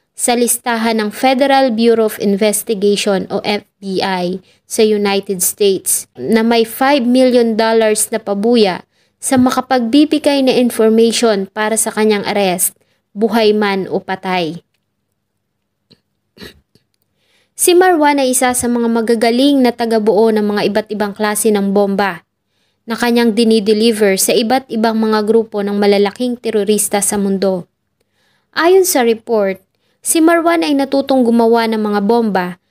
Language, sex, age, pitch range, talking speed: English, female, 20-39, 205-250 Hz, 125 wpm